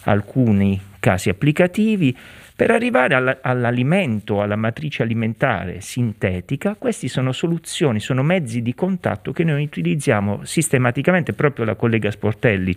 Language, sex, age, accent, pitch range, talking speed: Italian, male, 40-59, native, 105-155 Hz, 115 wpm